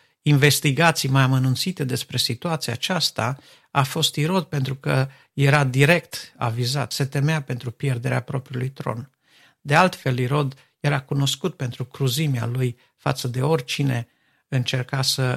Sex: male